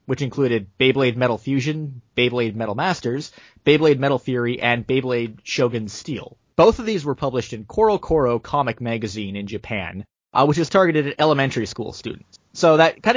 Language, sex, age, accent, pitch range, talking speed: English, male, 30-49, American, 110-140 Hz, 170 wpm